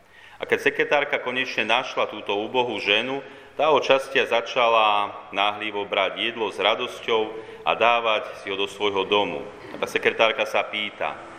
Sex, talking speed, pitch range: male, 140 wpm, 100-120 Hz